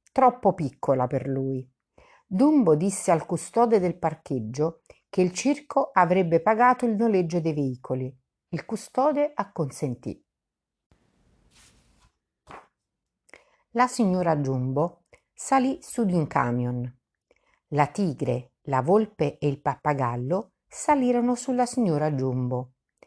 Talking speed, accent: 105 wpm, native